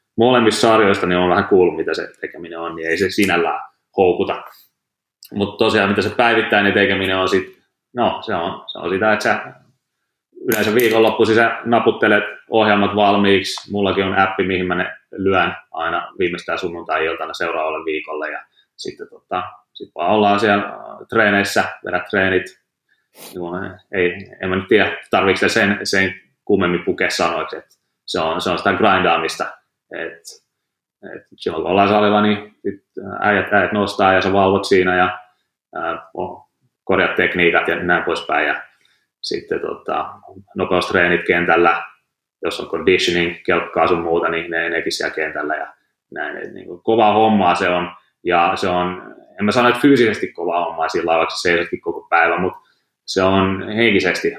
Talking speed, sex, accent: 150 wpm, male, native